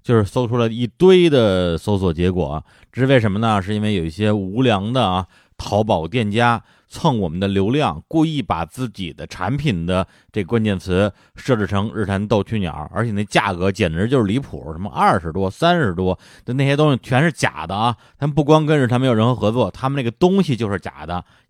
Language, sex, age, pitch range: Chinese, male, 30-49, 100-140 Hz